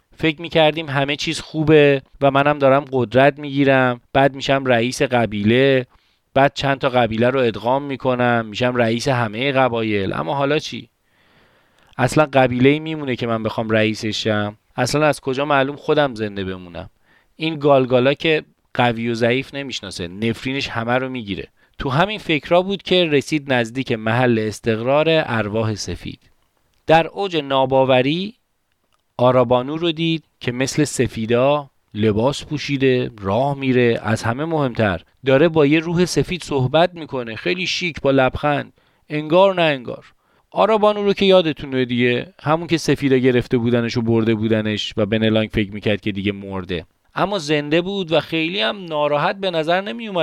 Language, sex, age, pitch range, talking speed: Persian, male, 30-49, 115-150 Hz, 150 wpm